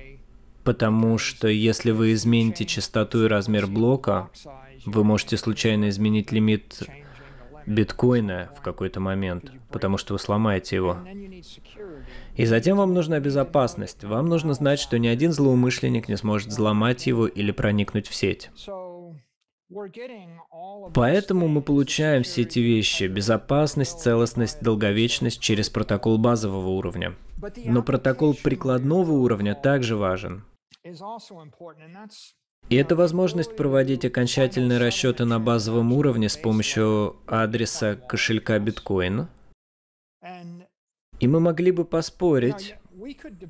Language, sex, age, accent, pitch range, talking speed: Russian, male, 20-39, native, 110-150 Hz, 110 wpm